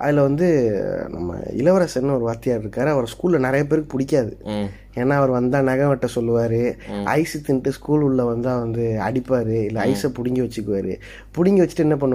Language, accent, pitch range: Tamil, native, 120-180 Hz